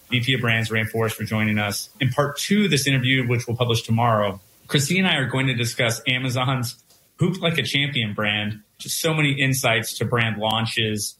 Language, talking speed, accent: English, 200 wpm, American